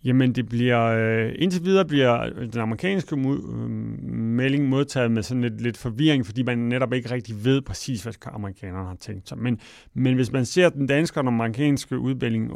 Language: English